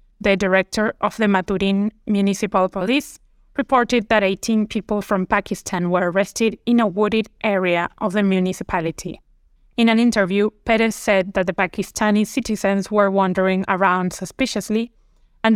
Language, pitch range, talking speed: English, 185-220 Hz, 140 wpm